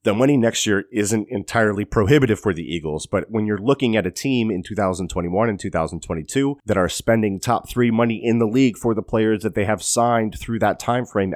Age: 30-49